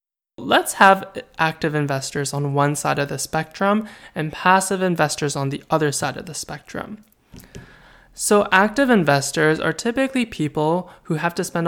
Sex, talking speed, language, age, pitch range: male, 155 wpm, English, 20-39, 145-180 Hz